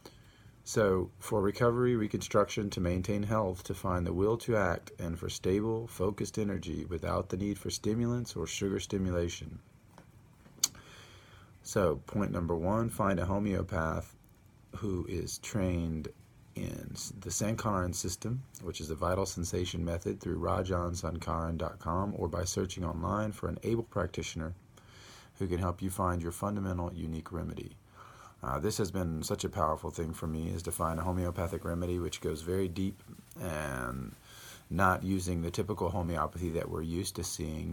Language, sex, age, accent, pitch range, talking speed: English, male, 40-59, American, 85-105 Hz, 155 wpm